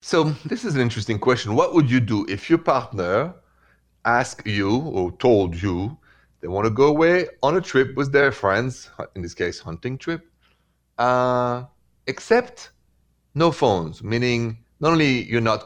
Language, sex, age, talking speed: English, male, 40-59, 165 wpm